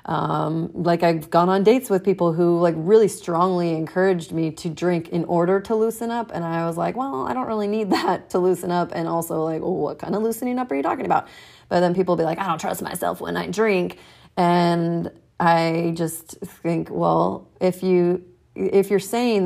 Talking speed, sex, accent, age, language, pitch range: 210 wpm, female, American, 30-49, English, 170-200 Hz